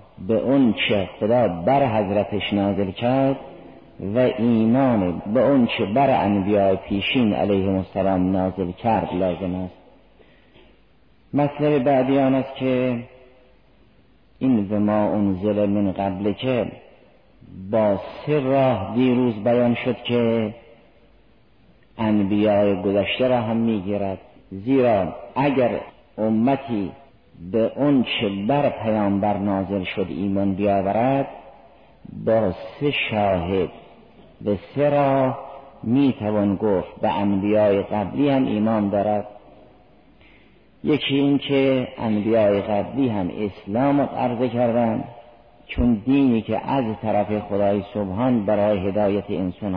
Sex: male